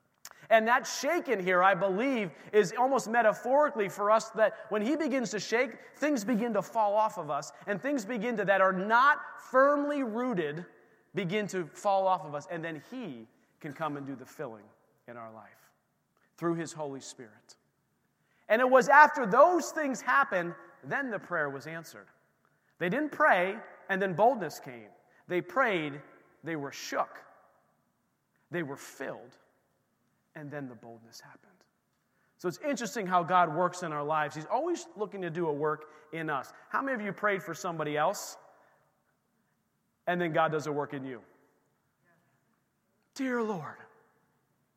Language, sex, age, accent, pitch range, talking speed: English, male, 30-49, American, 170-255 Hz, 165 wpm